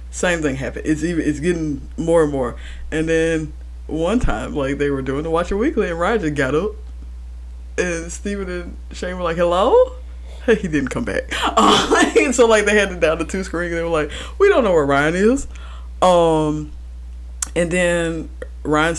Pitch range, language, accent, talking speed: 125-170 Hz, English, American, 195 wpm